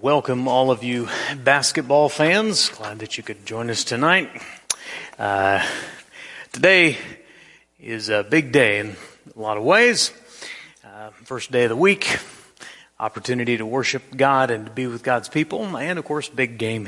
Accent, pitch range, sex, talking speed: American, 110-130 Hz, male, 160 wpm